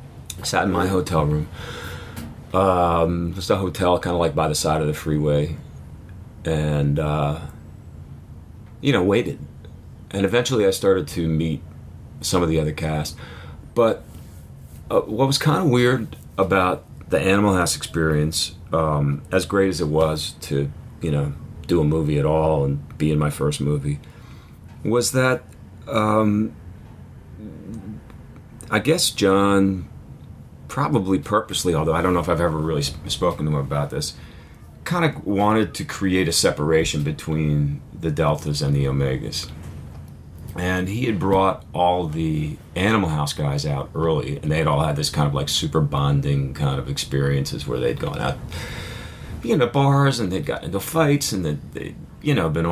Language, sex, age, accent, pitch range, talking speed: English, male, 40-59, American, 75-95 Hz, 165 wpm